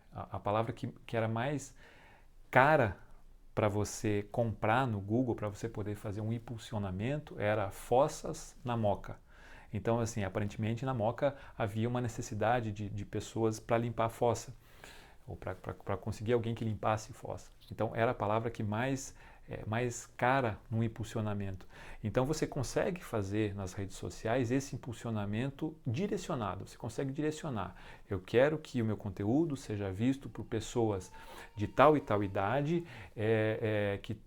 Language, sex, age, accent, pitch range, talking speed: Portuguese, male, 40-59, Brazilian, 105-125 Hz, 145 wpm